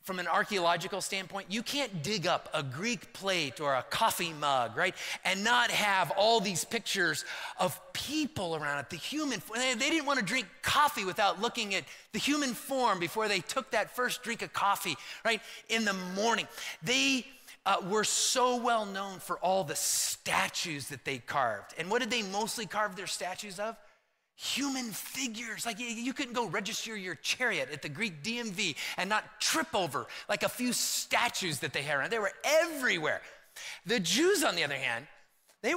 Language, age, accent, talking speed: English, 30-49, American, 185 wpm